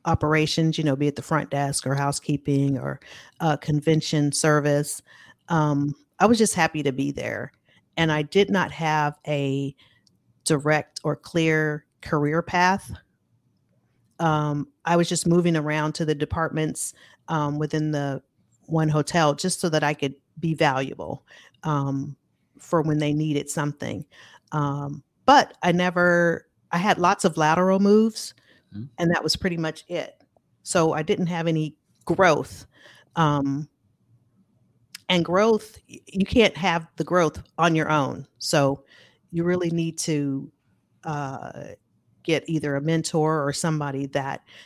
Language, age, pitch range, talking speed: English, 40-59, 140-165 Hz, 140 wpm